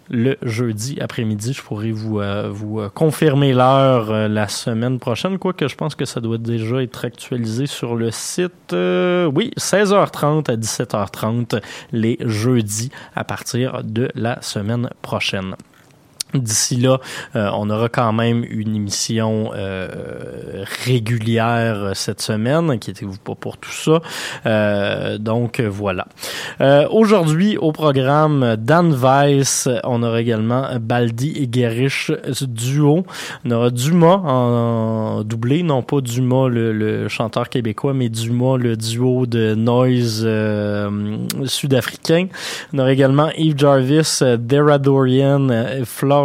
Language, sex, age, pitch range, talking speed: French, male, 20-39, 110-140 Hz, 130 wpm